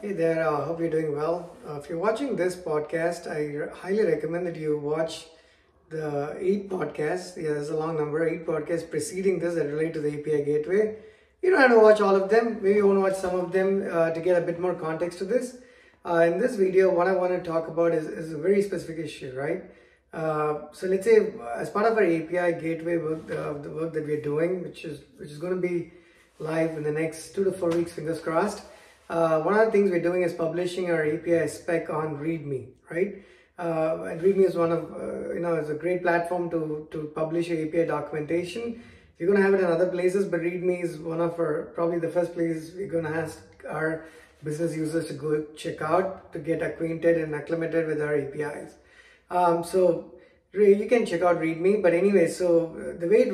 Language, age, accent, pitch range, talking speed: English, 20-39, Indian, 160-185 Hz, 225 wpm